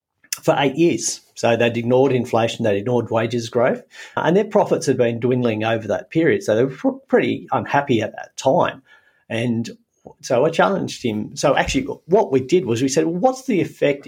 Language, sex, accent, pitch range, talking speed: English, male, Australian, 115-140 Hz, 190 wpm